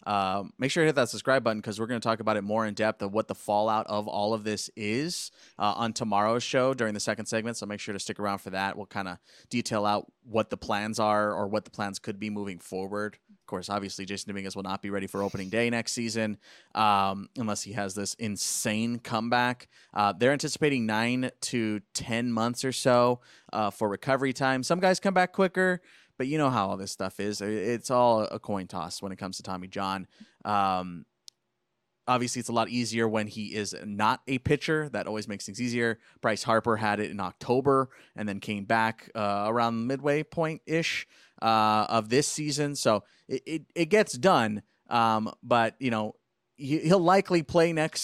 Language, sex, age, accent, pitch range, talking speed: English, male, 20-39, American, 105-130 Hz, 210 wpm